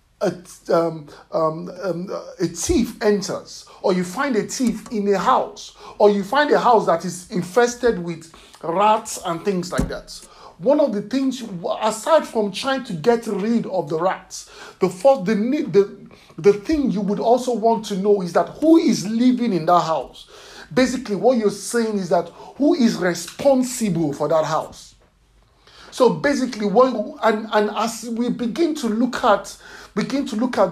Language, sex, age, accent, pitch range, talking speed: English, male, 50-69, Nigerian, 180-240 Hz, 170 wpm